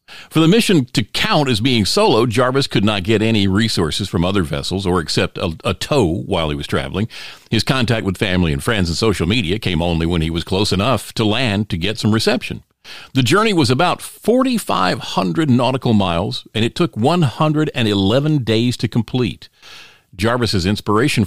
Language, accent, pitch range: English, American, 95-130 Hz